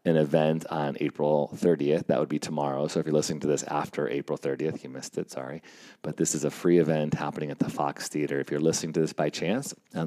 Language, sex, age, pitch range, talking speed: English, male, 30-49, 70-80 Hz, 245 wpm